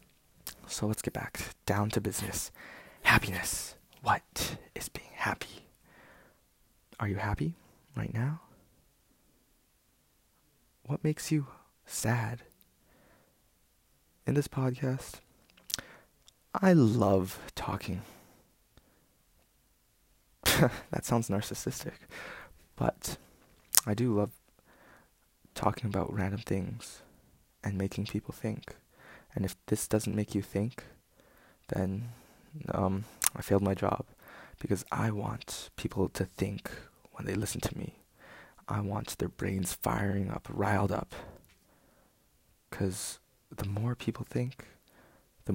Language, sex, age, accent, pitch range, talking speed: English, male, 20-39, American, 95-125 Hz, 105 wpm